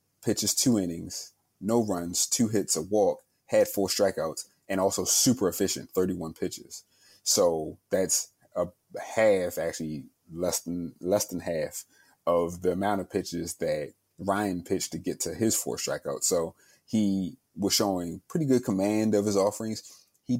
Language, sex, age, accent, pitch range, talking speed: English, male, 30-49, American, 90-110 Hz, 155 wpm